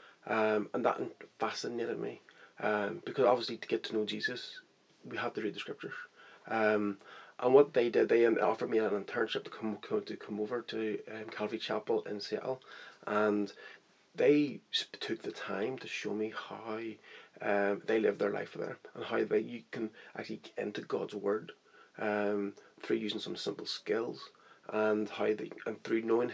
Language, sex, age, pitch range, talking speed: English, male, 30-49, 105-145 Hz, 180 wpm